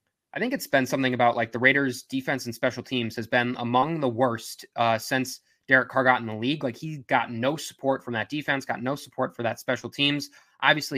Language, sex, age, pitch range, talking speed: English, male, 20-39, 115-130 Hz, 230 wpm